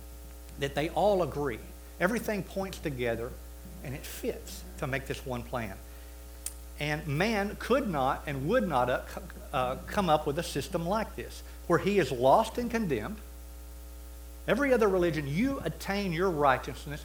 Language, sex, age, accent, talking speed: English, male, 60-79, American, 150 wpm